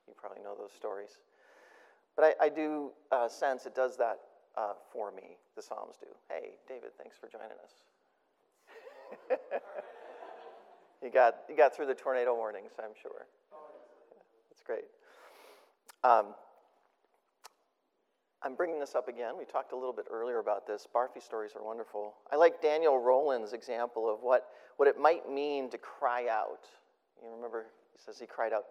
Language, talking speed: English, 165 wpm